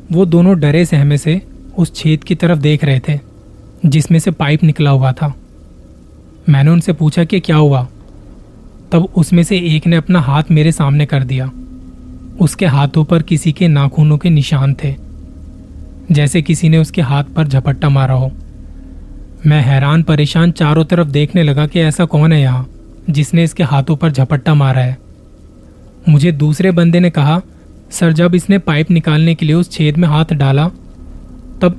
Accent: native